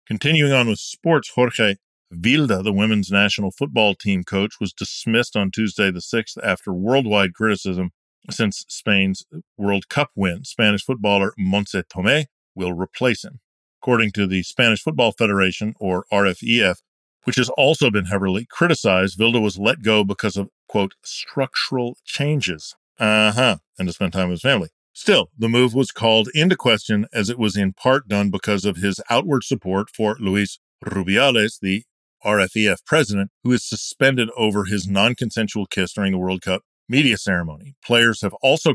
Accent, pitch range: American, 95-120 Hz